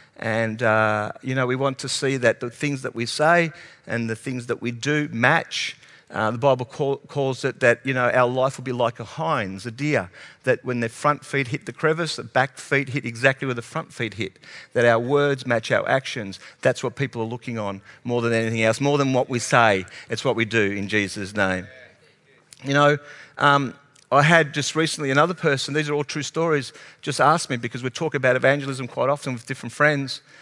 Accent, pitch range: Australian, 120-145 Hz